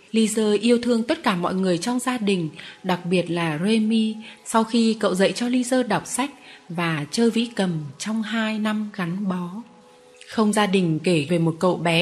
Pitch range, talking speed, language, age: 175-230 Hz, 195 wpm, Vietnamese, 20-39